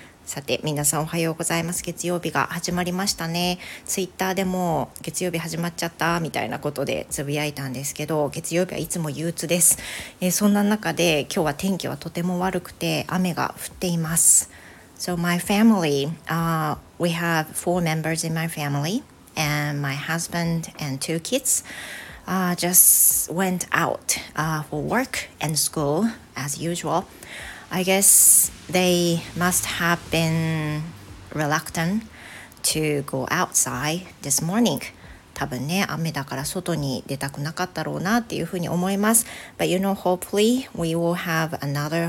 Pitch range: 150-180 Hz